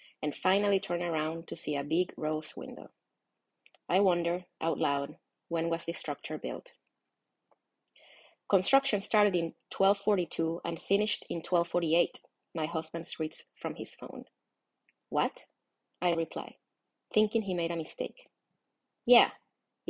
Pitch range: 160-195 Hz